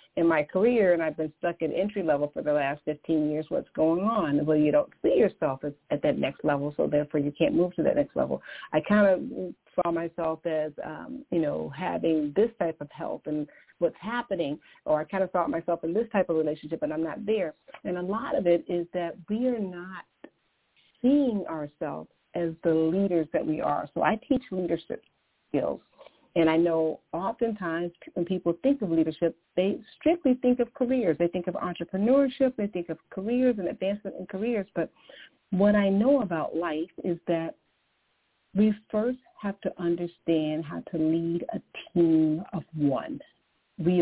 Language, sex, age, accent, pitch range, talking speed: English, female, 40-59, American, 155-200 Hz, 190 wpm